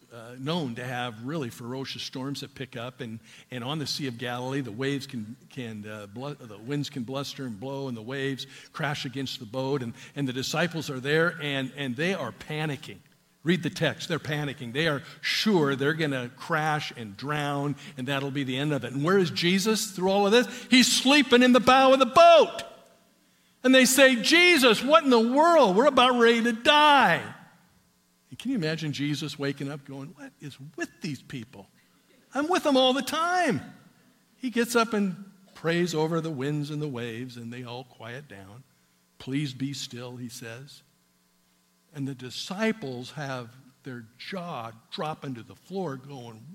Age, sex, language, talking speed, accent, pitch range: 50-69, male, English, 195 wpm, American, 125-180 Hz